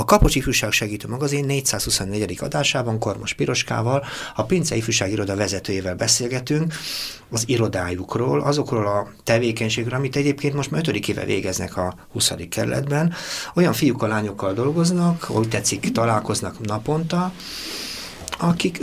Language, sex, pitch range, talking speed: Hungarian, male, 105-140 Hz, 125 wpm